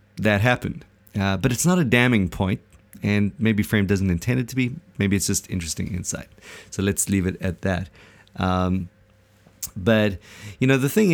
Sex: male